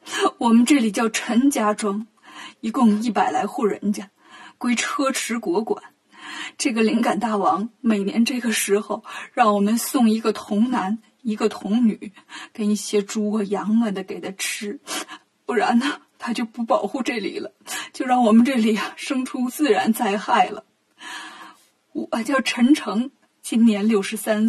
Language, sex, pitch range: Chinese, female, 215-285 Hz